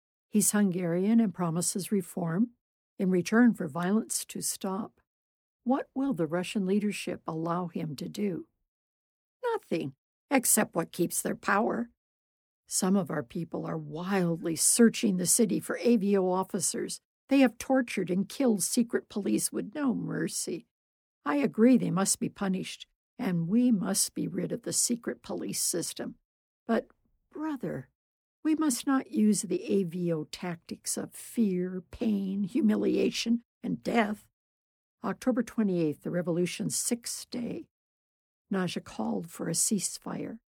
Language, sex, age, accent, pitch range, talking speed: English, female, 60-79, American, 180-230 Hz, 135 wpm